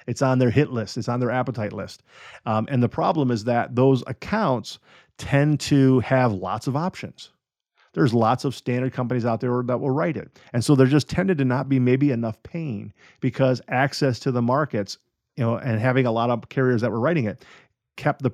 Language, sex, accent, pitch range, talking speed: English, male, American, 115-135 Hz, 215 wpm